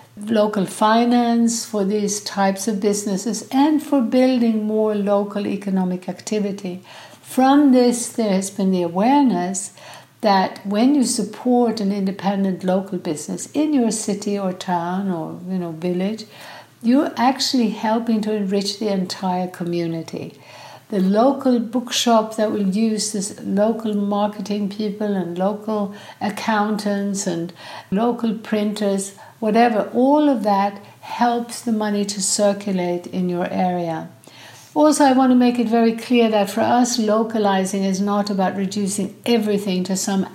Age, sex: 60-79, female